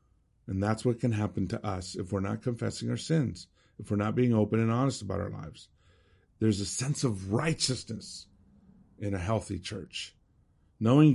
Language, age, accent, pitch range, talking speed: English, 50-69, American, 100-130 Hz, 180 wpm